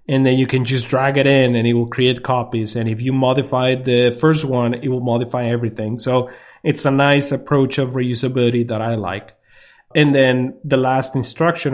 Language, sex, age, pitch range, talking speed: English, male, 30-49, 125-145 Hz, 200 wpm